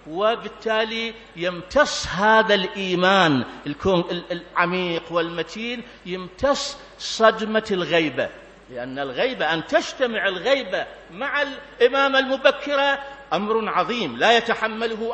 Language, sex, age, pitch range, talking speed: Arabic, male, 50-69, 200-245 Hz, 85 wpm